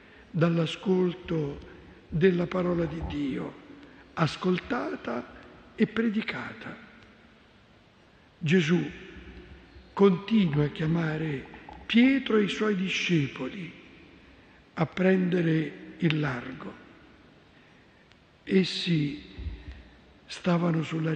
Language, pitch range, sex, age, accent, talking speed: Italian, 155-205 Hz, male, 60-79, native, 70 wpm